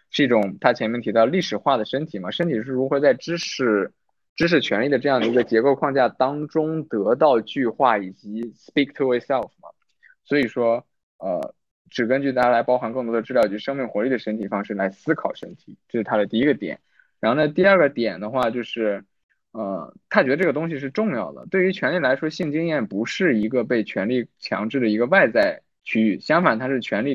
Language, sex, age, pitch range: Chinese, male, 20-39, 110-140 Hz